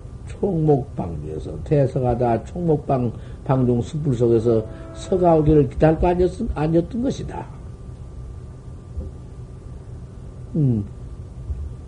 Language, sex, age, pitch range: Korean, male, 50-69, 115-170 Hz